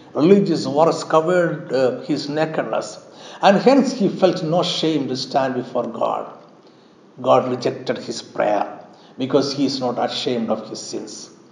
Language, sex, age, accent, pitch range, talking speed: Malayalam, male, 60-79, native, 140-215 Hz, 145 wpm